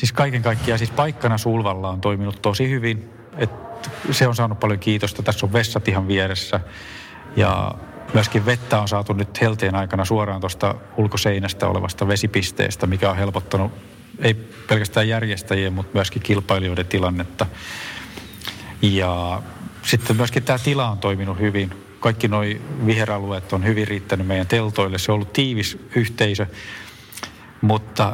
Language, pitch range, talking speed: Finnish, 100-115 Hz, 140 wpm